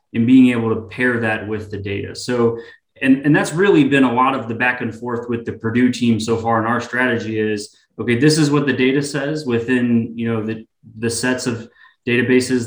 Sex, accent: male, American